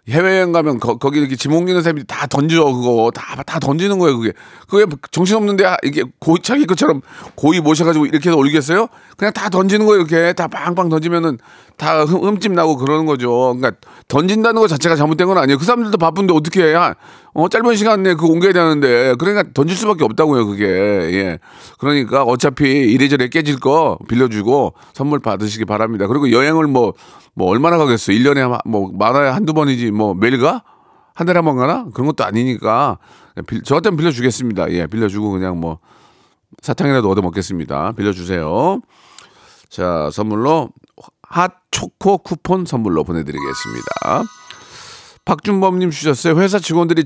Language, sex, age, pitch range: Korean, male, 40-59, 120-175 Hz